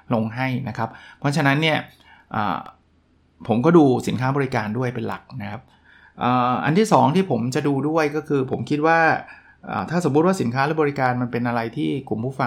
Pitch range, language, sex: 120-150 Hz, Thai, male